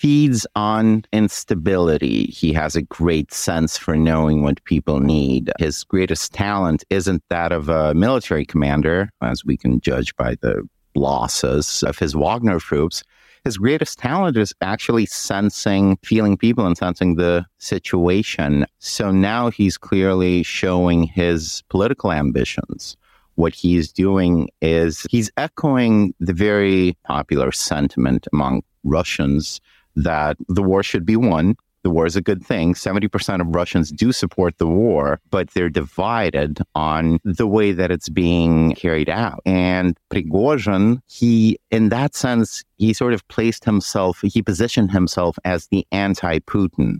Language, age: English, 50-69